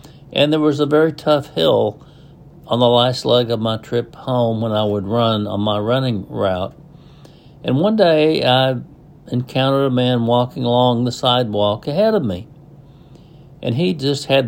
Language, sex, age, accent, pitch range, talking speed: English, male, 60-79, American, 115-145 Hz, 170 wpm